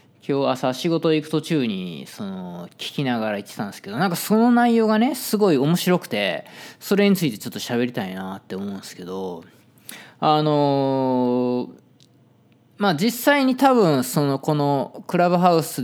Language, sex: Japanese, male